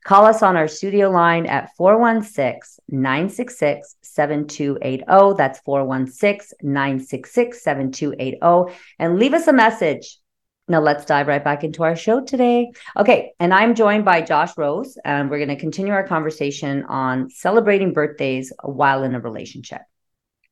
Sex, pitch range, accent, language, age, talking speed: female, 140-195 Hz, American, English, 40-59, 130 wpm